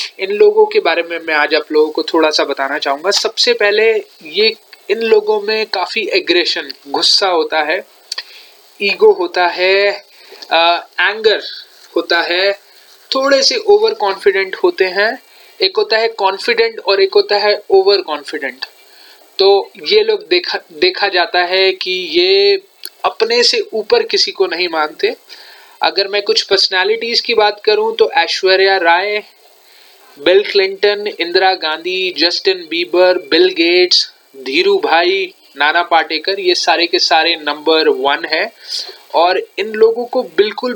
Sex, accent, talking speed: male, native, 145 wpm